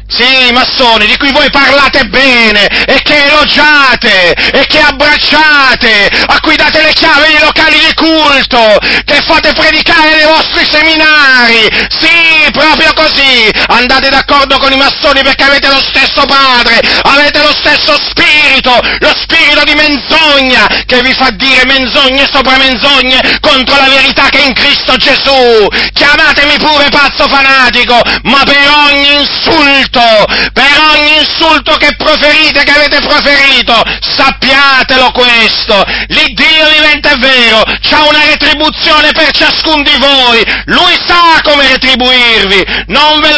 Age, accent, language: 40-59, native, Italian